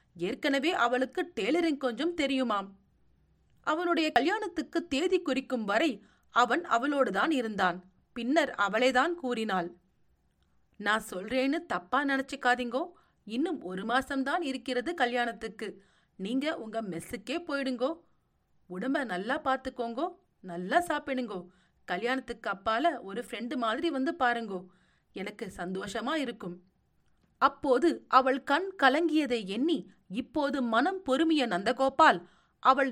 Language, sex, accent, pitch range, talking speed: Tamil, female, native, 215-320 Hz, 100 wpm